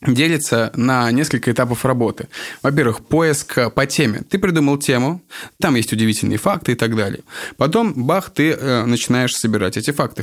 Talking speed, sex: 155 wpm, male